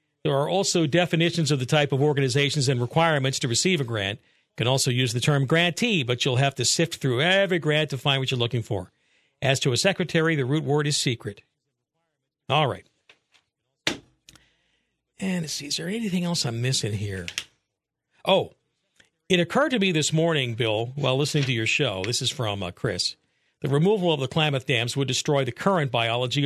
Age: 50-69